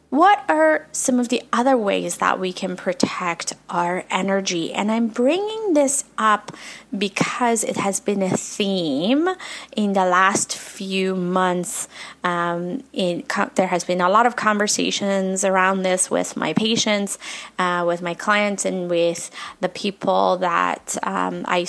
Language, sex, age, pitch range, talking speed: English, female, 30-49, 180-240 Hz, 145 wpm